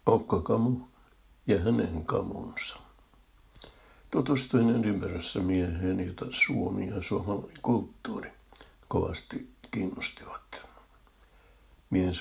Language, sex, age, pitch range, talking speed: Finnish, male, 60-79, 85-105 Hz, 75 wpm